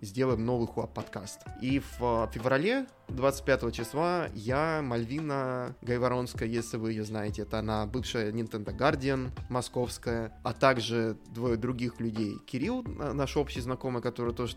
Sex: male